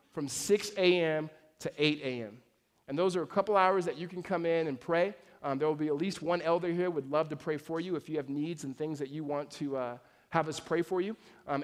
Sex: male